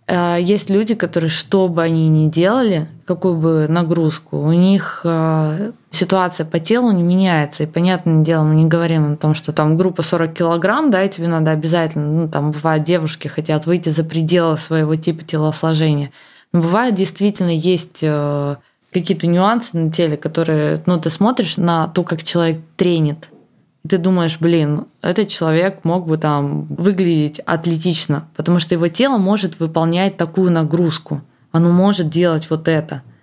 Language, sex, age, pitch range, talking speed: Russian, female, 20-39, 155-180 Hz, 155 wpm